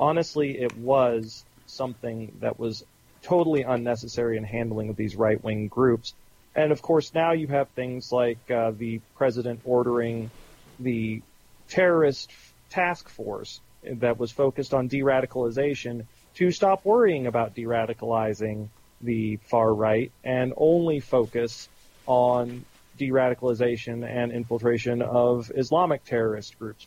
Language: English